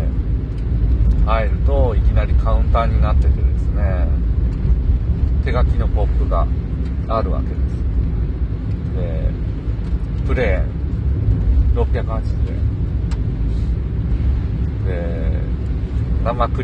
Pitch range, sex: 75-95 Hz, male